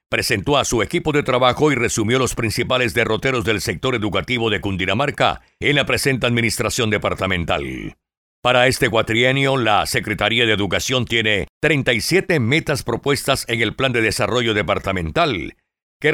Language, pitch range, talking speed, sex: Spanish, 110-140 Hz, 145 wpm, male